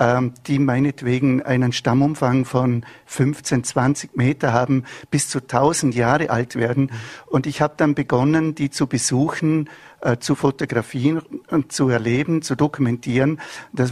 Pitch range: 130-150 Hz